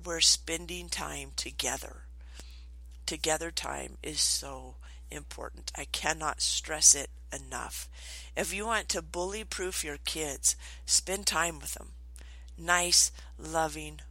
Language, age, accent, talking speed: English, 50-69, American, 110 wpm